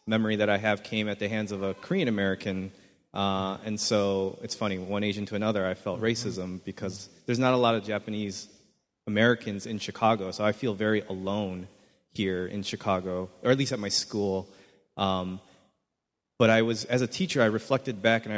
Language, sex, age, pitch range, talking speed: English, male, 30-49, 100-120 Hz, 195 wpm